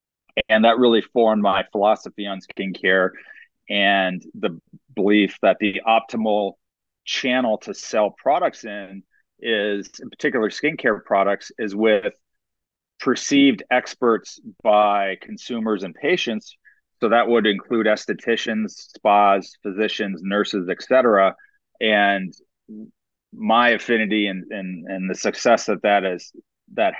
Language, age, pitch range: English, 30-49, 95-115 Hz